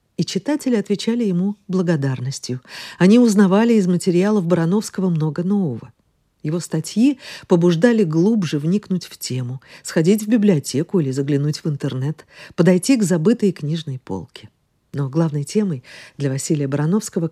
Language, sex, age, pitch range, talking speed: Russian, female, 50-69, 145-205 Hz, 130 wpm